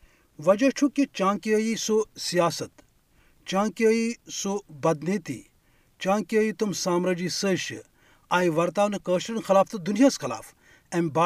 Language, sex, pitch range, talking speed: Urdu, male, 160-215 Hz, 105 wpm